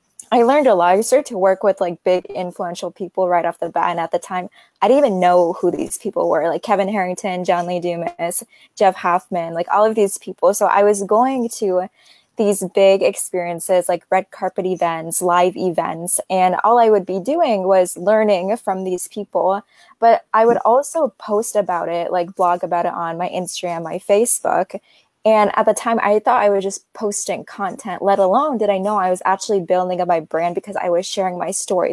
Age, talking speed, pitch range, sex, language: 20-39, 210 wpm, 180-220 Hz, female, English